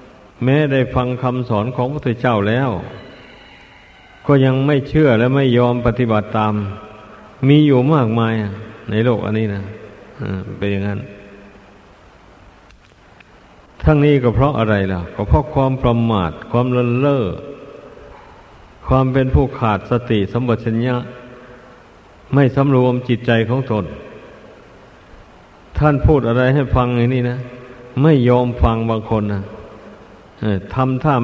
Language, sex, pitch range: Thai, male, 105-130 Hz